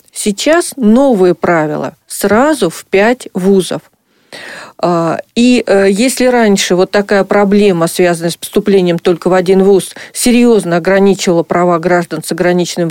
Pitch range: 180-245 Hz